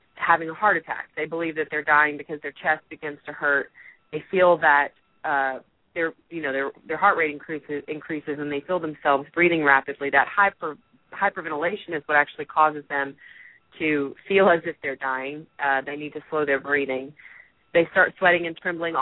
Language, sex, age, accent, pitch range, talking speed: English, female, 30-49, American, 145-180 Hz, 185 wpm